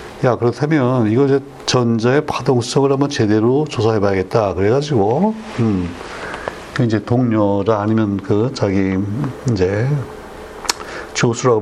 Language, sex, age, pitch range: Korean, male, 60-79, 110-140 Hz